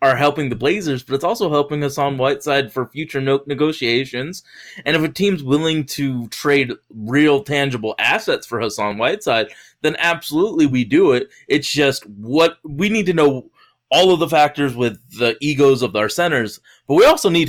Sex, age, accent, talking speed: male, 20-39, American, 180 wpm